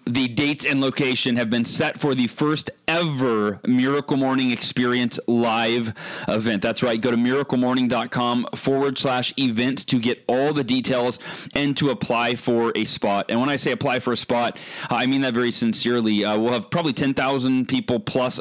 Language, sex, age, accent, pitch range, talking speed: English, male, 30-49, American, 120-150 Hz, 180 wpm